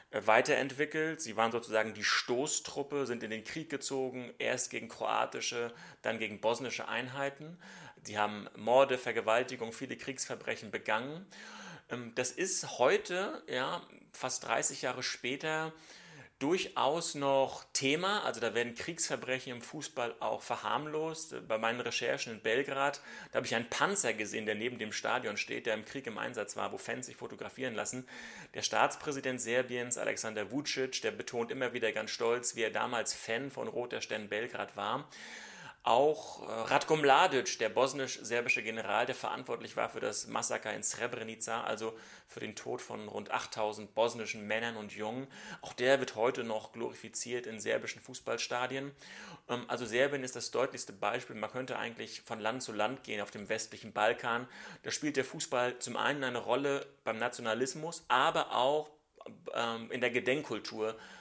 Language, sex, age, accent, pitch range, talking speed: German, male, 30-49, German, 115-140 Hz, 155 wpm